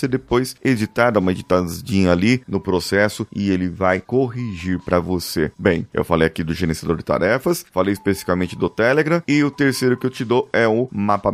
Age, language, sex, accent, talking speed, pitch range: 30-49, Portuguese, male, Brazilian, 185 wpm, 90-120 Hz